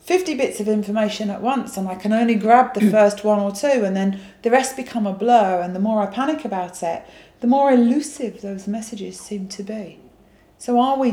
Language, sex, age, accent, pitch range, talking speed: English, female, 40-59, British, 200-250 Hz, 220 wpm